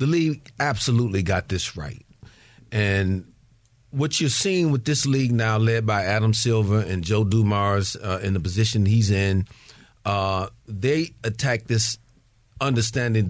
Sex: male